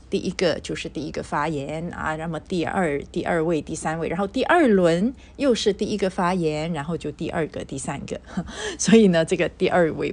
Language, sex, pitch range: Chinese, female, 165-235 Hz